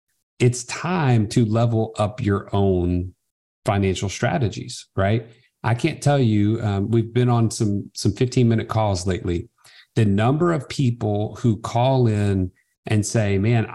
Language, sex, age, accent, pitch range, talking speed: English, male, 40-59, American, 100-125 Hz, 145 wpm